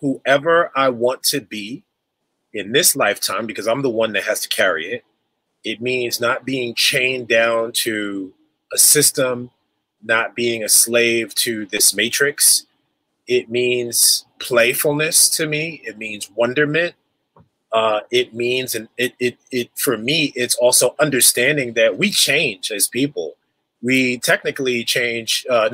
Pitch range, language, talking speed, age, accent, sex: 115-145 Hz, English, 145 wpm, 30-49, American, male